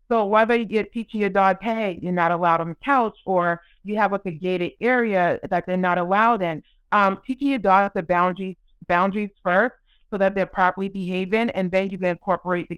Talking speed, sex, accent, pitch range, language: 210 wpm, female, American, 175-215 Hz, English